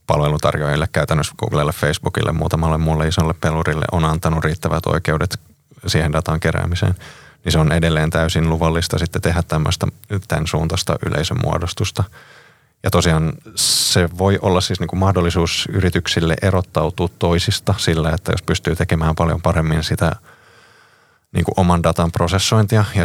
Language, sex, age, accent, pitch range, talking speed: Finnish, male, 20-39, native, 80-90 Hz, 130 wpm